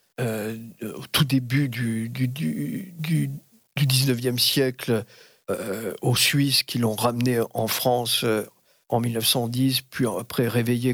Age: 50-69